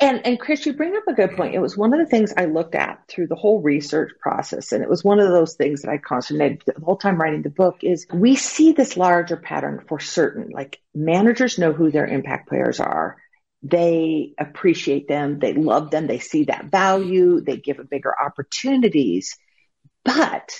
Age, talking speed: 50-69, 205 wpm